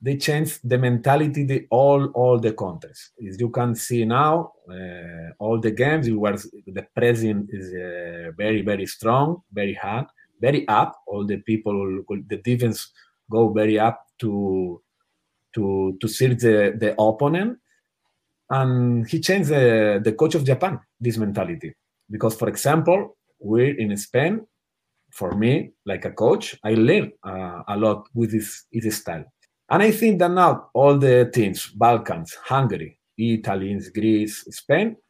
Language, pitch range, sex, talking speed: German, 105-140 Hz, male, 150 wpm